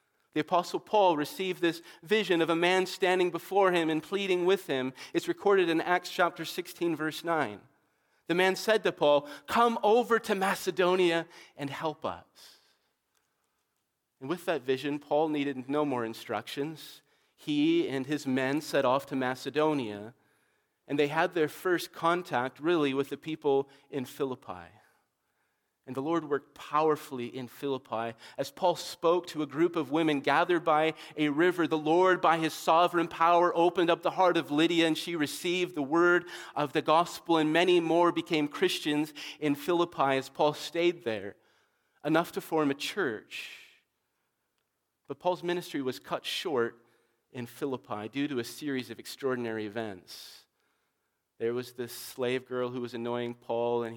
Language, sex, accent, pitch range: English, male, American, 135-175 Hz